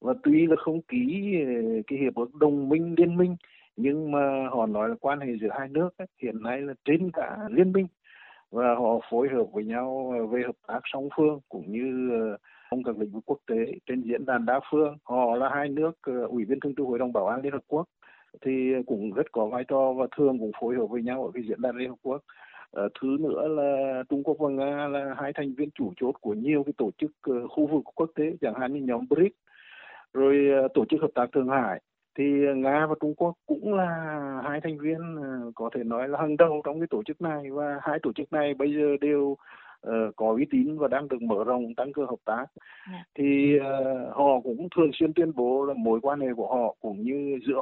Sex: male